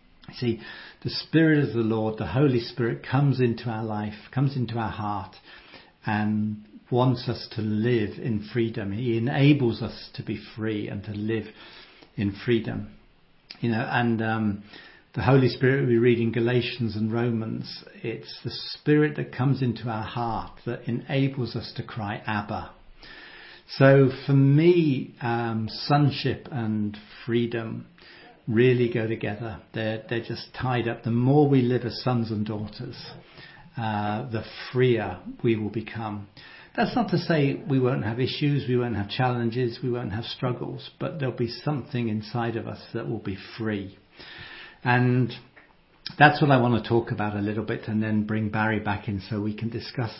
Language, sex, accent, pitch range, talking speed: English, male, British, 110-130 Hz, 165 wpm